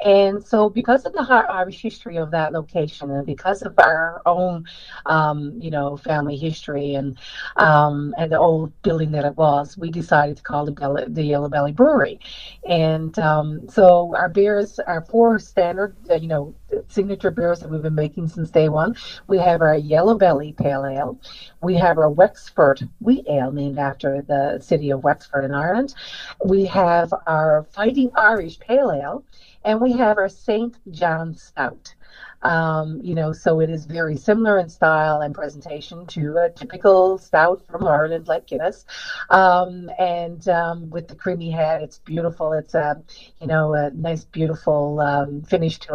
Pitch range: 150-190 Hz